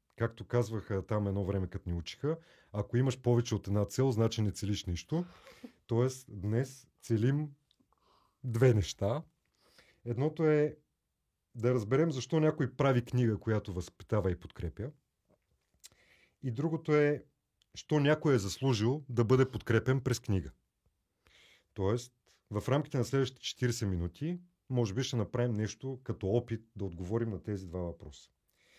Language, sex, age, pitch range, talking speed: Bulgarian, male, 40-59, 100-135 Hz, 140 wpm